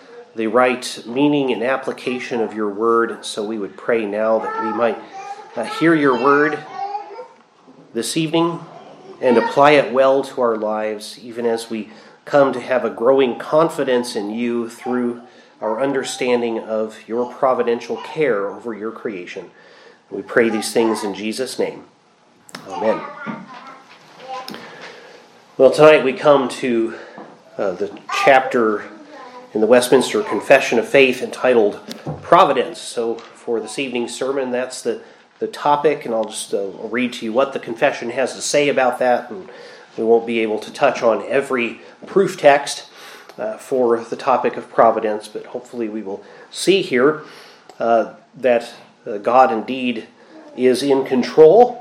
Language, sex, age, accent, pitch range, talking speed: English, male, 30-49, American, 115-145 Hz, 150 wpm